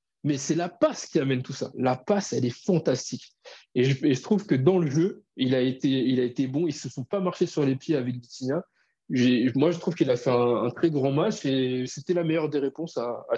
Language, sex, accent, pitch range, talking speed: French, male, French, 140-180 Hz, 270 wpm